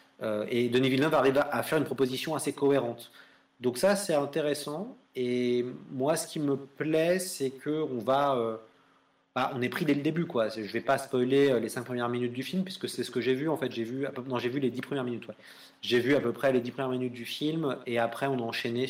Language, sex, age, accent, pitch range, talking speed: French, male, 30-49, French, 120-145 Hz, 250 wpm